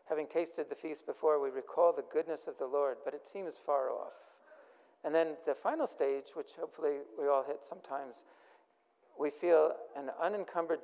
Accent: American